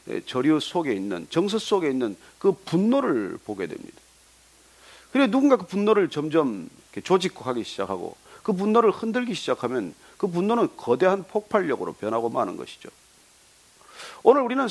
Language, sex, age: Korean, male, 40-59